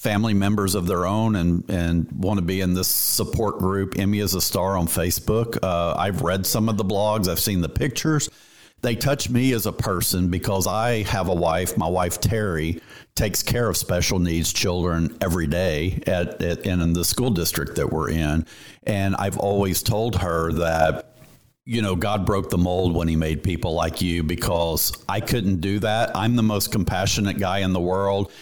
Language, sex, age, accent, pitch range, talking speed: English, male, 50-69, American, 85-105 Hz, 200 wpm